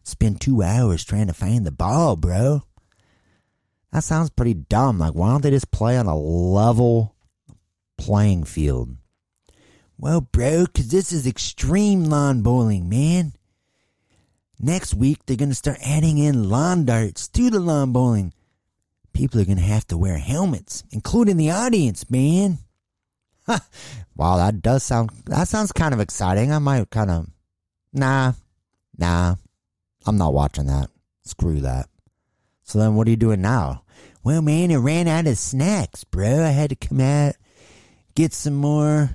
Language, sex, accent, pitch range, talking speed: English, male, American, 95-145 Hz, 160 wpm